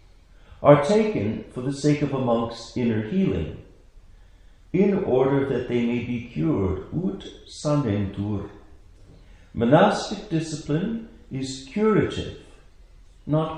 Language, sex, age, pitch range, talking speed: English, male, 60-79, 95-135 Hz, 105 wpm